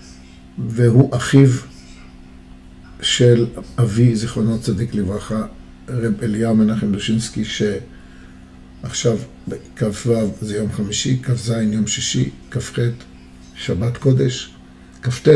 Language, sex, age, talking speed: Hebrew, male, 50-69, 95 wpm